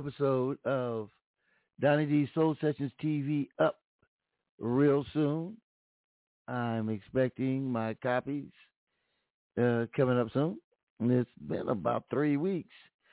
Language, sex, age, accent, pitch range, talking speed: English, male, 60-79, American, 120-155 Hz, 115 wpm